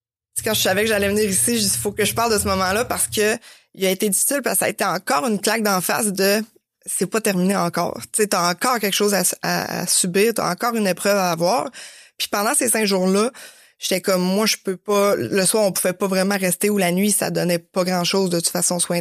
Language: French